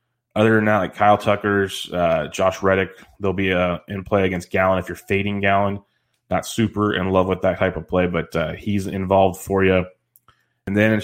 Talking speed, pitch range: 205 wpm, 90-100 Hz